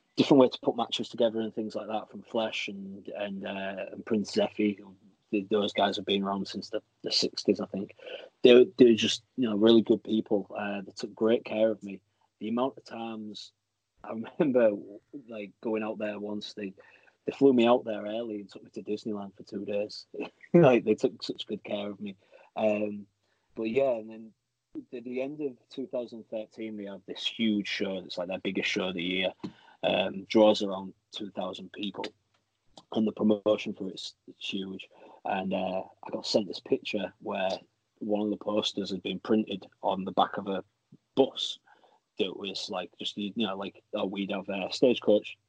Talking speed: 195 wpm